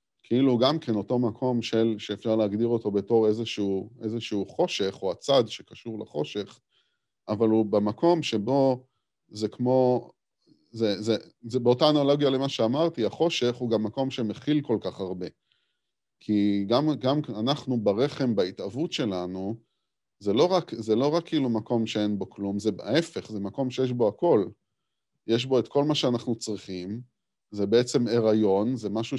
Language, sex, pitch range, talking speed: Hebrew, male, 105-125 Hz, 155 wpm